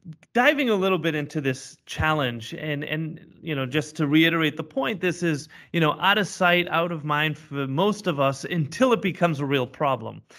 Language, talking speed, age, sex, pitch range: English, 210 wpm, 30-49, male, 145-175 Hz